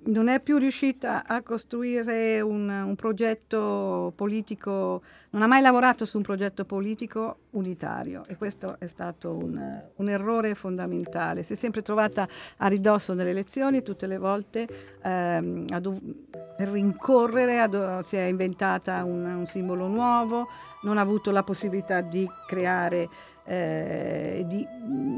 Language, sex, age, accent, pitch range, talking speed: Italian, female, 50-69, native, 180-225 Hz, 135 wpm